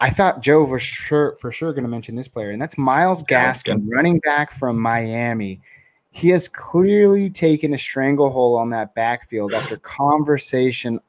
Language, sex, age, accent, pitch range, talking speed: English, male, 20-39, American, 110-140 Hz, 170 wpm